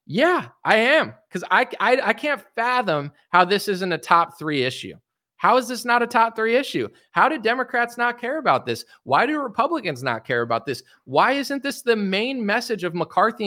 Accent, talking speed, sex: American, 205 wpm, male